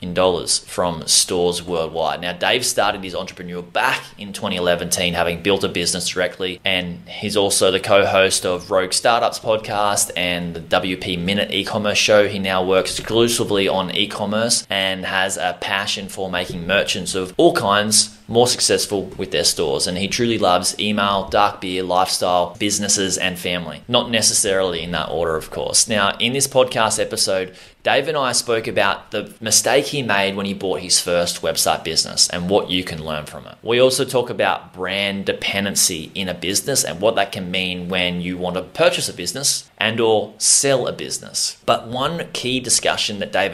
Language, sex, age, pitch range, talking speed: English, male, 20-39, 90-110 Hz, 180 wpm